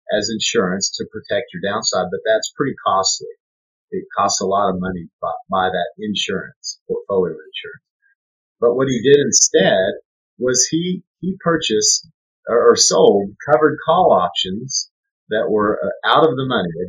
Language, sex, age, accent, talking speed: English, male, 40-59, American, 155 wpm